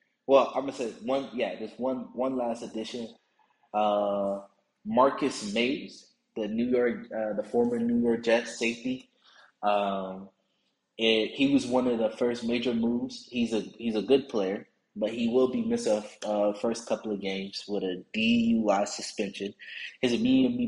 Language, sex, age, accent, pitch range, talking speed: English, male, 20-39, American, 105-130 Hz, 170 wpm